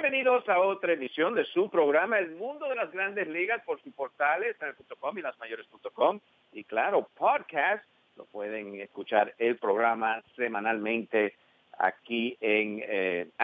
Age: 50-69